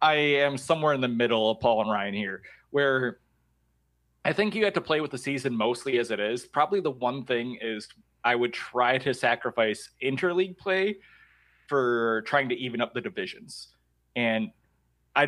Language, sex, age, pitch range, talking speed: English, male, 20-39, 105-140 Hz, 180 wpm